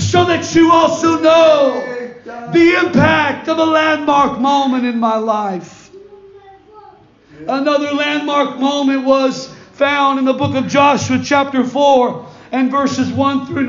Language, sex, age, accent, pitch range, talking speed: English, male, 40-59, American, 245-295 Hz, 130 wpm